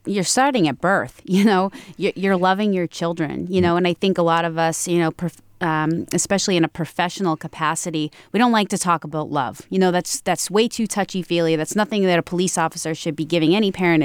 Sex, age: female, 30-49